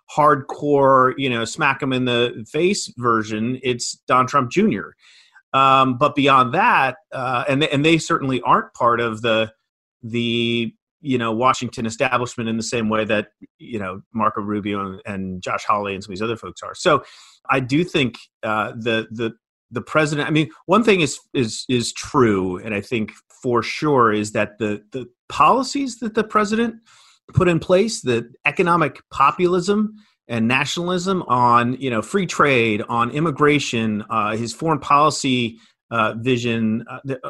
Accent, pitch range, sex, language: American, 110-140 Hz, male, English